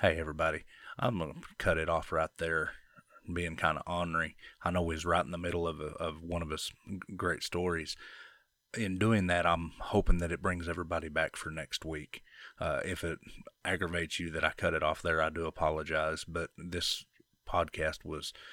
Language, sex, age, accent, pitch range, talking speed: English, male, 30-49, American, 80-90 Hz, 195 wpm